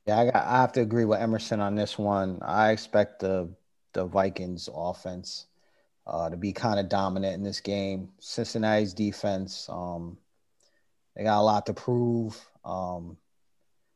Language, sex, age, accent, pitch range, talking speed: English, male, 30-49, American, 100-115 Hz, 155 wpm